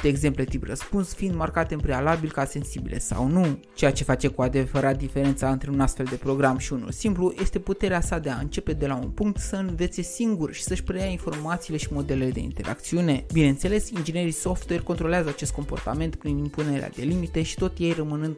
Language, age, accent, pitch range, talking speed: Romanian, 20-39, native, 135-185 Hz, 200 wpm